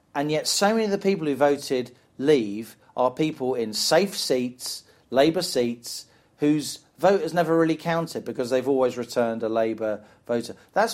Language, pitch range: English, 125-170 Hz